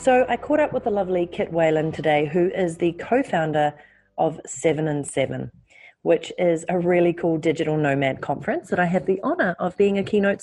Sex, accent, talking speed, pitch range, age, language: female, Australian, 200 wpm, 150-185 Hz, 30-49, English